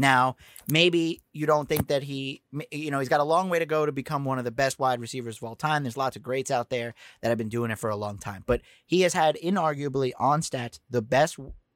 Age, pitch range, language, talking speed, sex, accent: 30-49, 125-155 Hz, English, 260 wpm, male, American